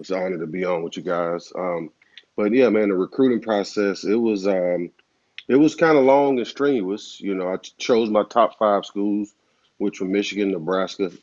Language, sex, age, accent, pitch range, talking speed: English, male, 30-49, American, 90-105 Hz, 210 wpm